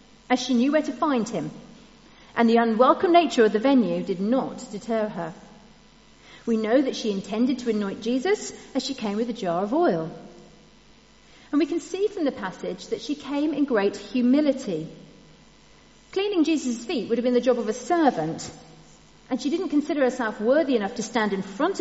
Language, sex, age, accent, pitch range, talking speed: English, female, 40-59, British, 210-285 Hz, 190 wpm